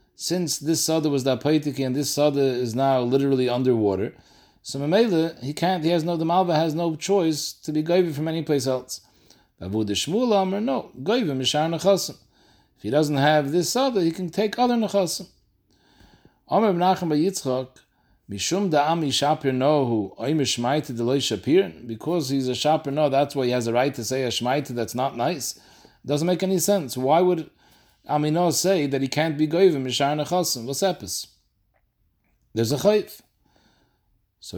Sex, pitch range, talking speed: male, 130-175 Hz, 170 wpm